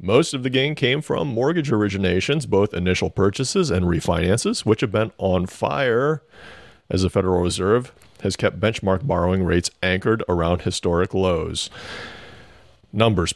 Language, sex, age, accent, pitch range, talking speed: English, male, 40-59, American, 90-120 Hz, 145 wpm